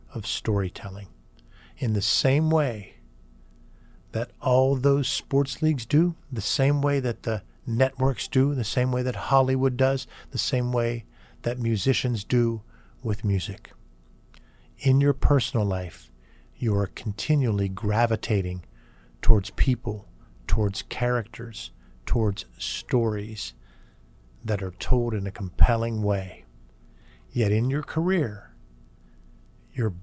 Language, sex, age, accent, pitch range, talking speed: English, male, 50-69, American, 95-125 Hz, 120 wpm